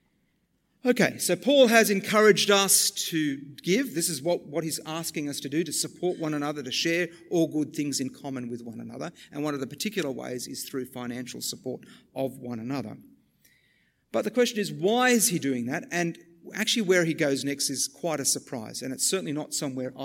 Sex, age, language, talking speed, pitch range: male, 50-69, English, 205 wpm, 145-190 Hz